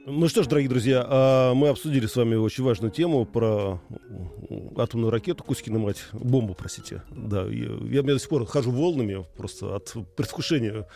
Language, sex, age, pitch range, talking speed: Russian, male, 40-59, 115-160 Hz, 165 wpm